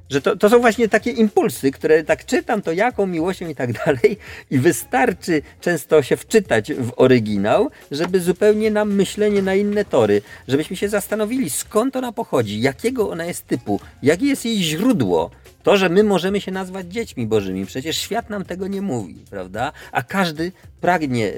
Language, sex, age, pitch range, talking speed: Polish, male, 40-59, 115-185 Hz, 175 wpm